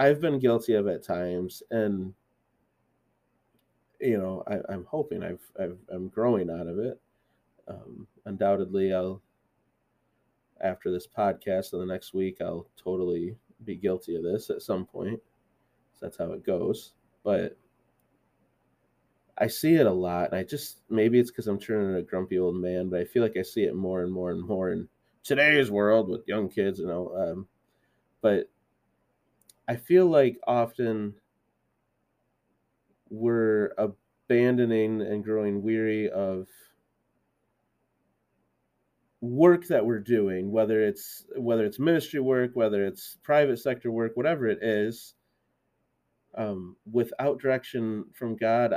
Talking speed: 145 wpm